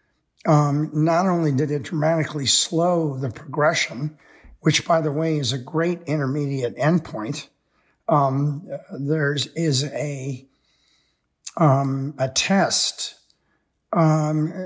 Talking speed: 105 wpm